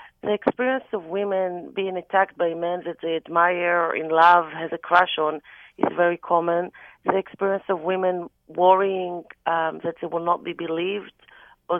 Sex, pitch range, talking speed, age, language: female, 175-215 Hz, 175 wpm, 40-59, English